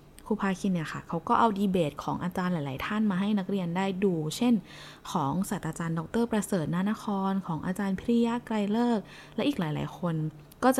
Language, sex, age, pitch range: Thai, female, 20-39, 165-225 Hz